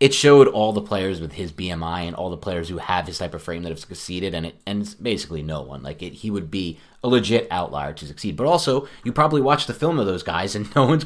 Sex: male